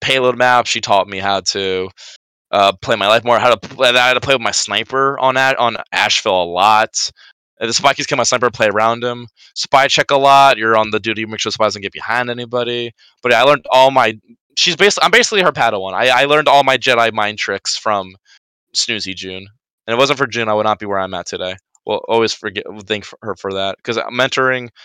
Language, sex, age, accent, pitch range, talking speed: English, male, 20-39, American, 100-125 Hz, 245 wpm